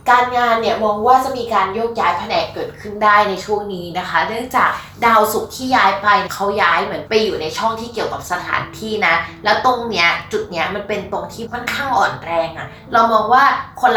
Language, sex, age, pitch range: Thai, female, 20-39, 170-230 Hz